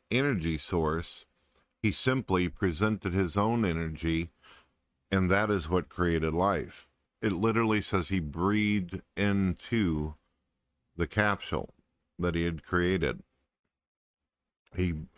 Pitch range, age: 80-95 Hz, 50-69